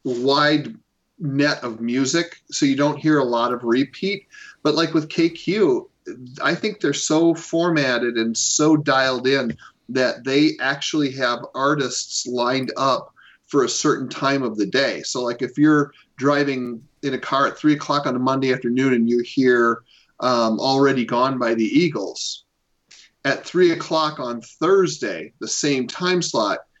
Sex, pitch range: male, 120-155 Hz